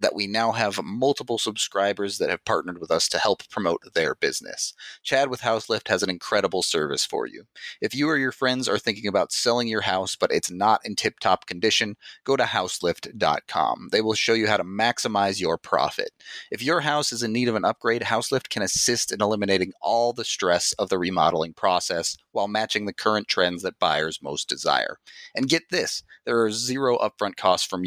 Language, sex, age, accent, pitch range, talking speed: English, male, 30-49, American, 100-125 Hz, 200 wpm